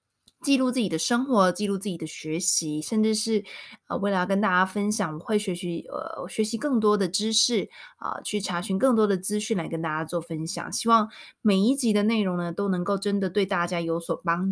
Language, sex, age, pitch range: Chinese, female, 20-39, 180-225 Hz